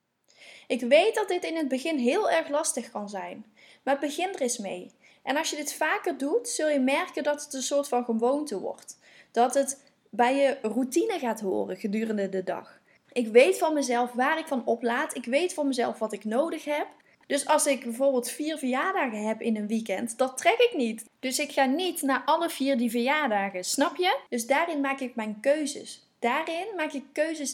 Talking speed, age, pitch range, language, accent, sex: 205 wpm, 10-29, 235-300 Hz, Dutch, Dutch, female